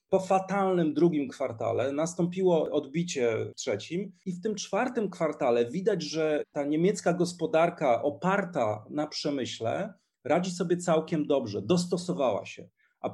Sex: male